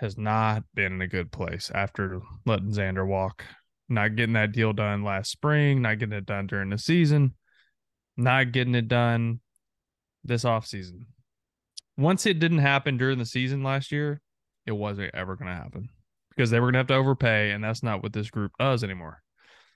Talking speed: 190 wpm